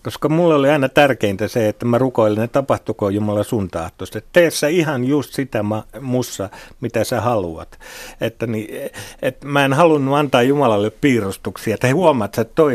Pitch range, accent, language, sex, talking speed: 105-140 Hz, native, Finnish, male, 160 wpm